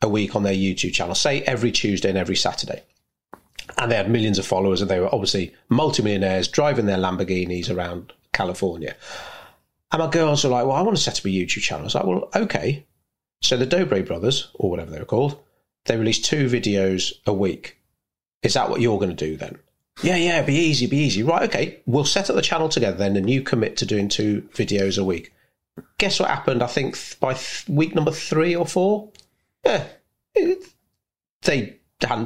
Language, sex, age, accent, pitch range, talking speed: English, male, 30-49, British, 100-145 Hz, 205 wpm